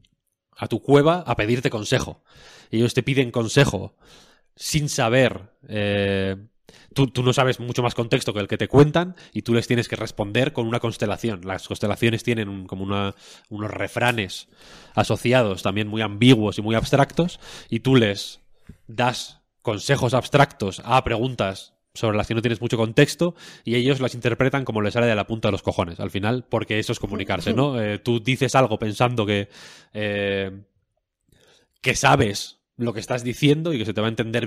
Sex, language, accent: male, Spanish, Spanish